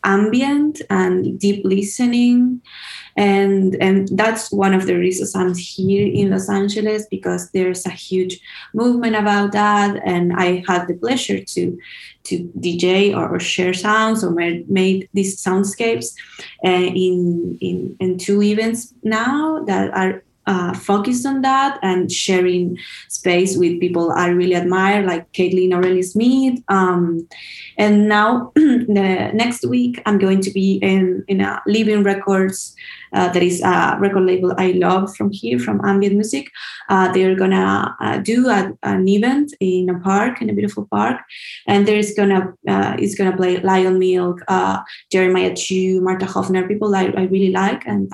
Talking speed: 160 wpm